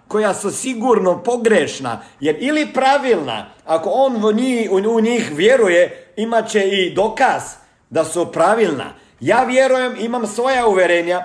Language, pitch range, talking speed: Croatian, 190-240 Hz, 130 wpm